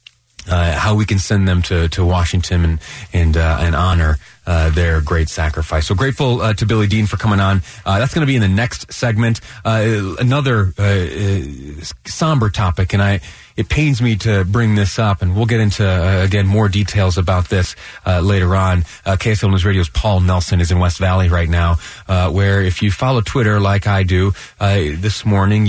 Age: 30-49